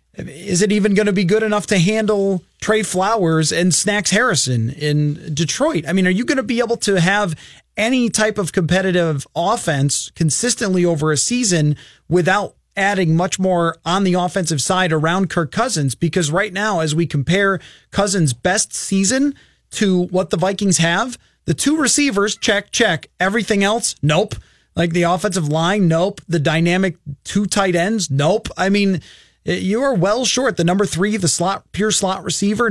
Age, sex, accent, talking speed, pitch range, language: 30-49, male, American, 170 wpm, 165-210 Hz, English